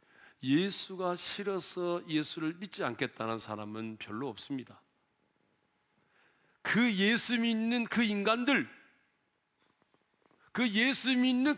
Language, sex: Korean, male